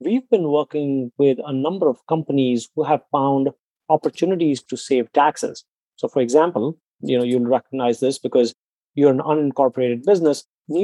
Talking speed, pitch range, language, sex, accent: 160 wpm, 130-160 Hz, English, male, Indian